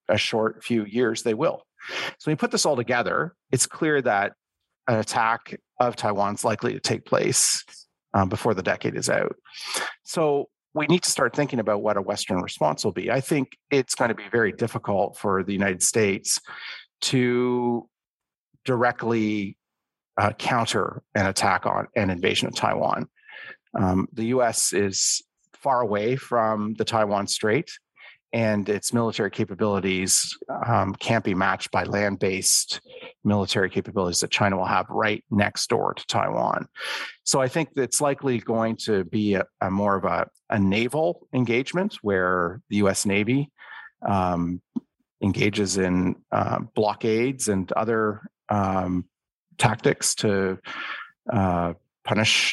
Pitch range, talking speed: 100-120 Hz, 145 wpm